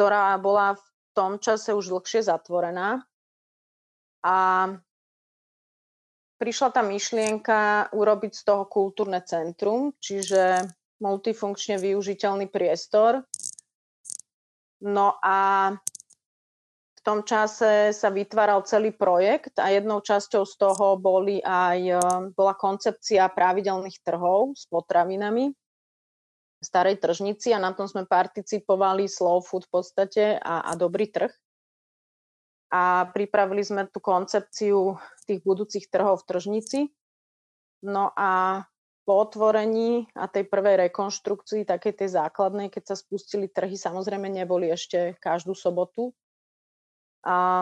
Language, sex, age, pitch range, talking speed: Slovak, female, 30-49, 185-210 Hz, 115 wpm